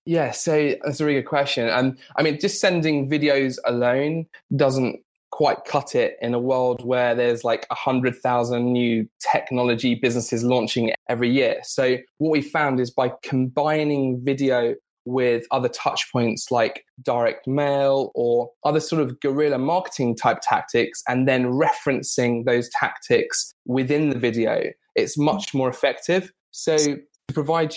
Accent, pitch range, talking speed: British, 120-145 Hz, 150 wpm